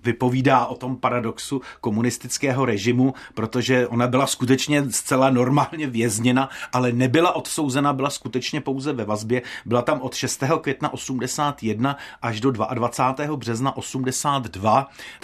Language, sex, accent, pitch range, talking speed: Czech, male, native, 115-135 Hz, 125 wpm